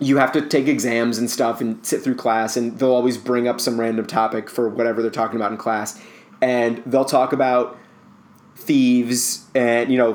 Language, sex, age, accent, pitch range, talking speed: English, male, 30-49, American, 115-145 Hz, 200 wpm